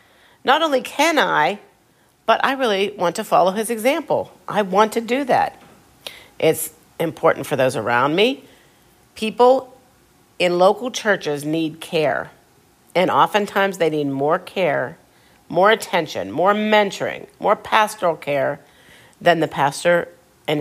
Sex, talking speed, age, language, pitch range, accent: female, 135 wpm, 50-69, English, 145-195 Hz, American